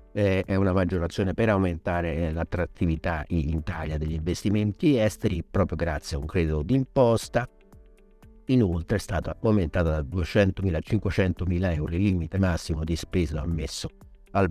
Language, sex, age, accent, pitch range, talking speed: Italian, male, 50-69, native, 80-100 Hz, 135 wpm